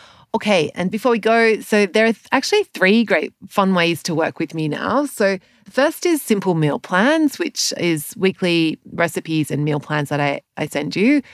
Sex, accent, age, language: female, Australian, 30-49, English